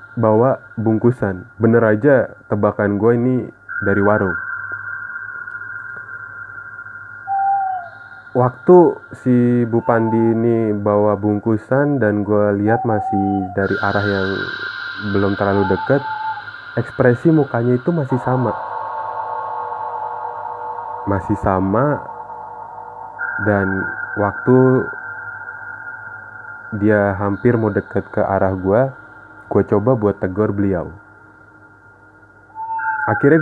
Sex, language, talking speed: male, Indonesian, 85 wpm